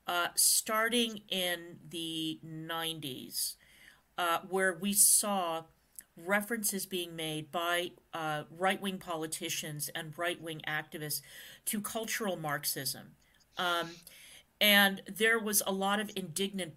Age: 40-59